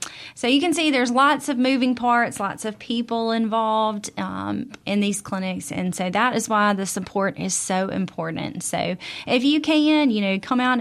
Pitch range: 190-255 Hz